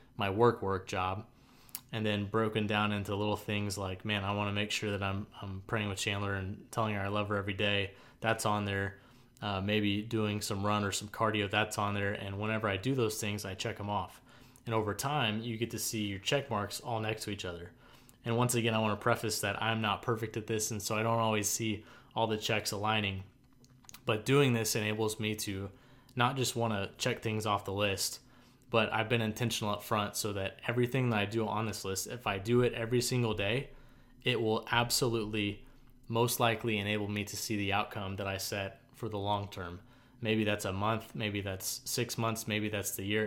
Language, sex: English, male